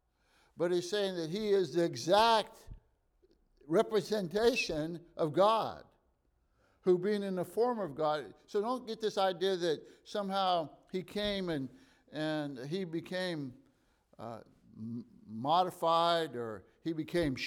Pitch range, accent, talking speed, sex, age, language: 140-190 Hz, American, 125 wpm, male, 60-79, English